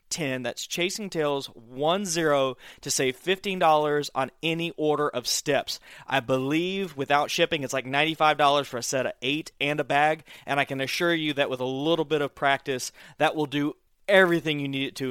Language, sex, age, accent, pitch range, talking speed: English, male, 30-49, American, 130-155 Hz, 205 wpm